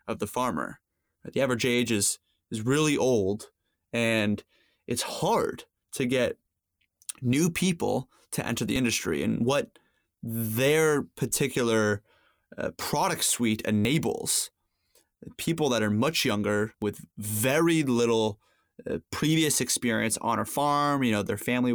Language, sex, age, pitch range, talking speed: English, male, 20-39, 105-130 Hz, 125 wpm